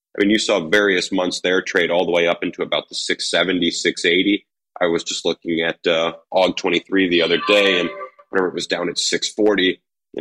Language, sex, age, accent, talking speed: English, male, 30-49, American, 210 wpm